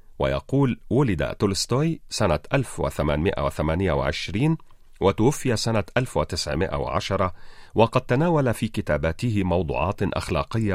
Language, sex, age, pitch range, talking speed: Arabic, male, 40-59, 85-125 Hz, 80 wpm